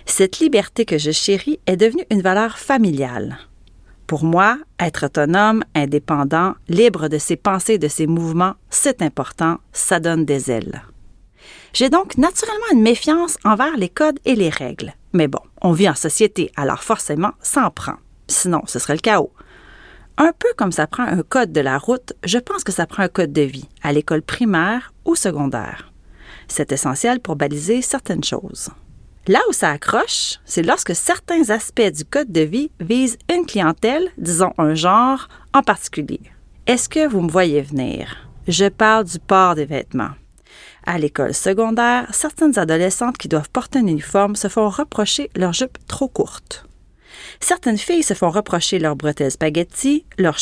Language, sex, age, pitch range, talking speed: French, female, 40-59, 155-240 Hz, 170 wpm